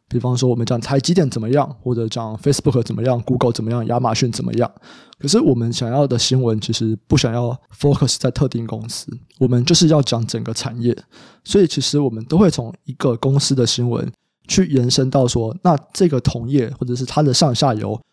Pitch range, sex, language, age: 120-140 Hz, male, Chinese, 20-39